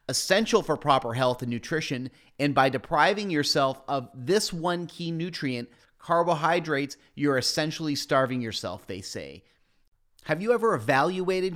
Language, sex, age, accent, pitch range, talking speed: English, male, 30-49, American, 135-175 Hz, 135 wpm